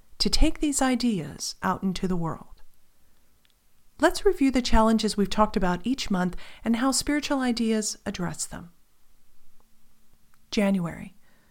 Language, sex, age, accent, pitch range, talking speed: English, female, 40-59, American, 170-255 Hz, 125 wpm